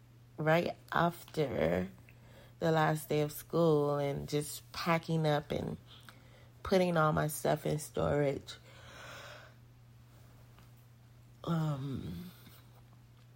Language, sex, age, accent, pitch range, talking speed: English, female, 30-49, American, 120-155 Hz, 85 wpm